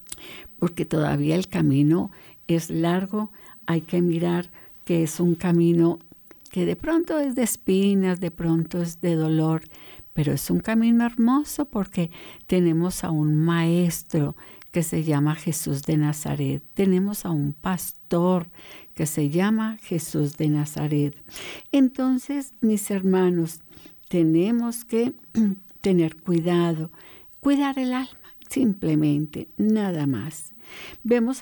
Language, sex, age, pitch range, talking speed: Spanish, female, 60-79, 165-220 Hz, 120 wpm